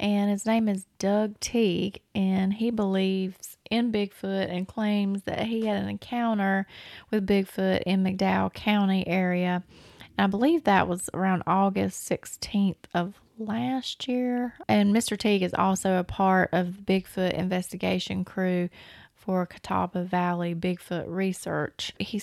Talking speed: 145 wpm